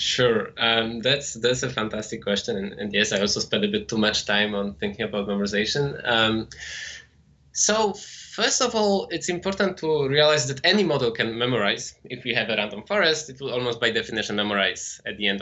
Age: 20-39